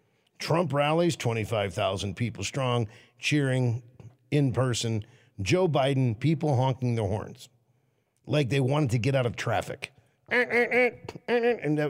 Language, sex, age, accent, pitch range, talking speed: English, male, 50-69, American, 125-180 Hz, 120 wpm